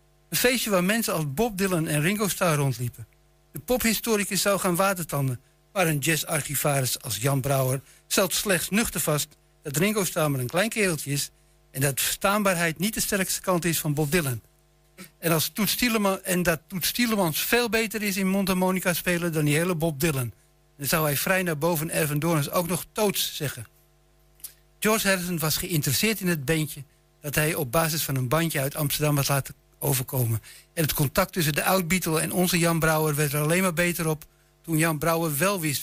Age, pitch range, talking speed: 60-79, 150-185 Hz, 190 wpm